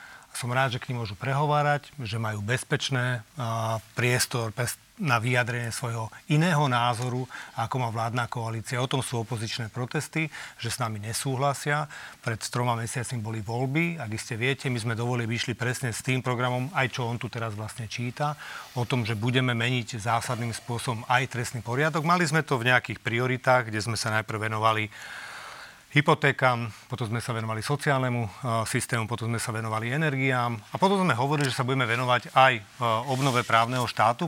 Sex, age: male, 40-59